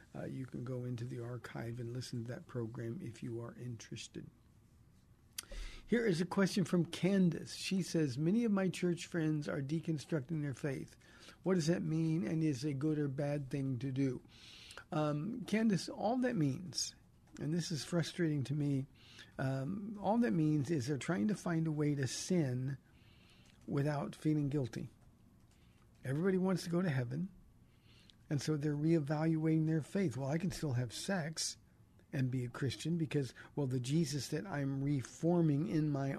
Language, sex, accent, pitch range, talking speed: English, male, American, 135-165 Hz, 175 wpm